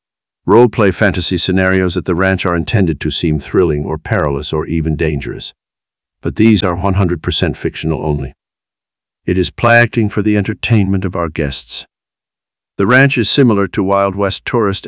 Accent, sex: American, male